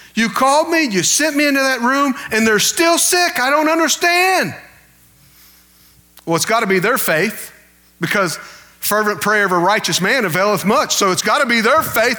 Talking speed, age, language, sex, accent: 180 wpm, 40-59, English, male, American